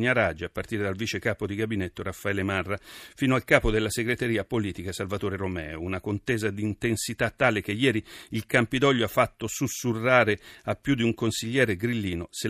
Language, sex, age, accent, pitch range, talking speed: Italian, male, 40-59, native, 100-120 Hz, 180 wpm